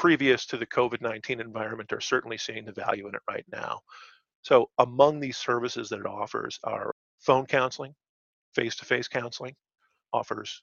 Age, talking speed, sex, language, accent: 40-59, 150 wpm, male, English, American